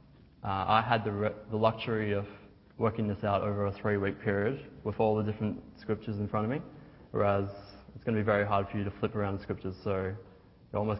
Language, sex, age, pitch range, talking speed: English, male, 20-39, 100-120 Hz, 225 wpm